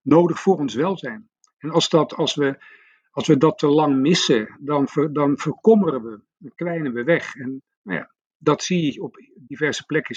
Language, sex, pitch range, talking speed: Dutch, male, 130-170 Hz, 195 wpm